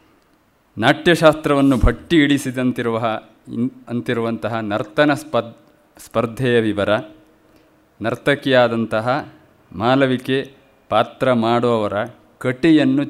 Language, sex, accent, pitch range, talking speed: Kannada, male, native, 110-135 Hz, 65 wpm